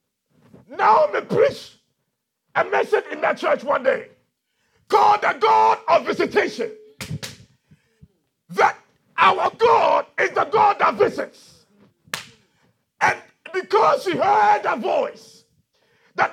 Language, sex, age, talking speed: English, male, 50-69, 105 wpm